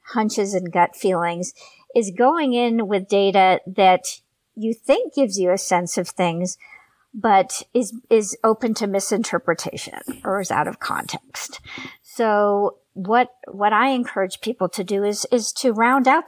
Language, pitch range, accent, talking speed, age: English, 185-225 Hz, American, 155 wpm, 50-69